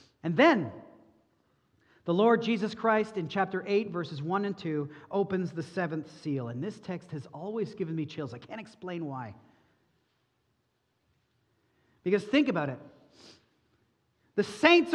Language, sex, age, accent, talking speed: English, male, 40-59, American, 140 wpm